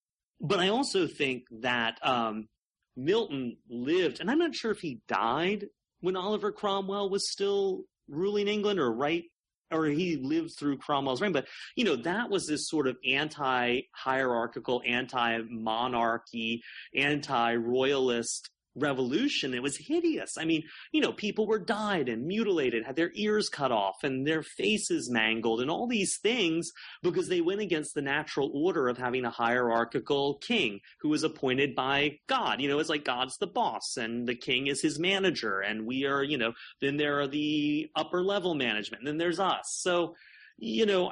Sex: male